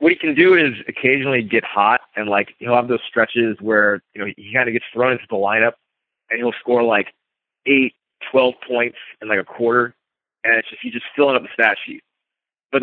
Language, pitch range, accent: English, 110-135 Hz, American